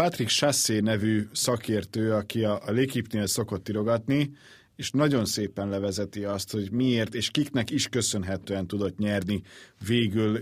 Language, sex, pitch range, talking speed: Hungarian, male, 100-125 Hz, 140 wpm